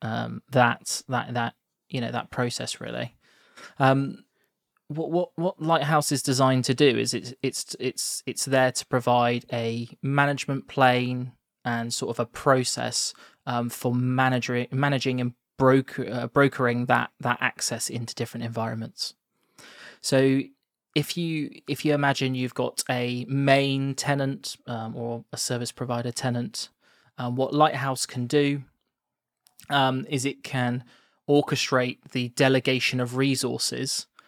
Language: English